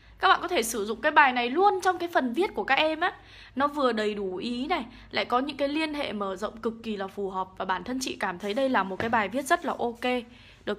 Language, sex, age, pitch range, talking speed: Vietnamese, female, 10-29, 220-290 Hz, 295 wpm